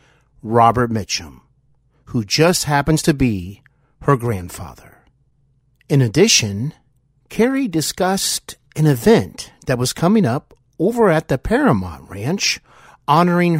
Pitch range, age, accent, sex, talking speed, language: 115-160 Hz, 50-69, American, male, 110 wpm, English